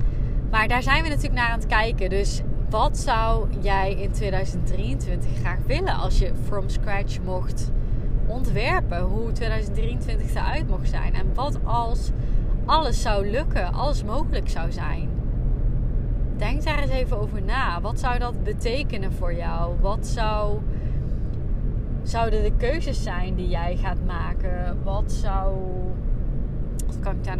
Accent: Dutch